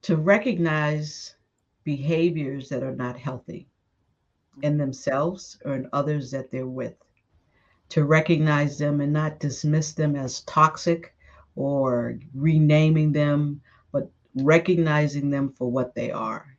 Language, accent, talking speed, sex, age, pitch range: English, American, 125 wpm, female, 50-69, 140-160 Hz